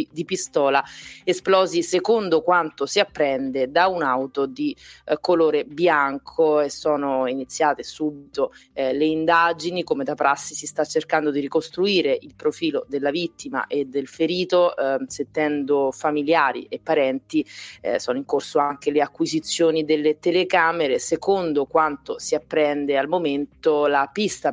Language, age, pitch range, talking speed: Italian, 30-49, 145-175 Hz, 140 wpm